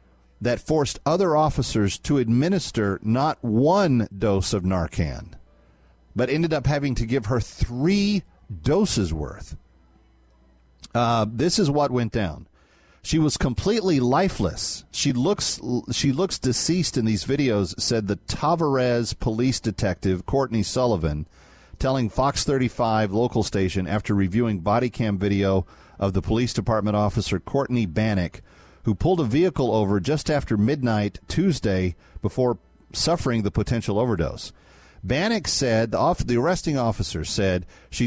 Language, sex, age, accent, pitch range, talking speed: English, male, 40-59, American, 95-135 Hz, 135 wpm